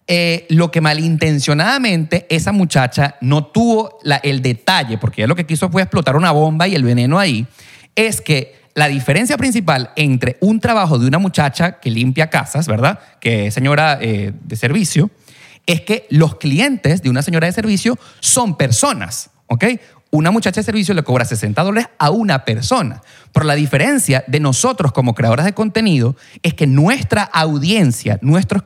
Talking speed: 170 wpm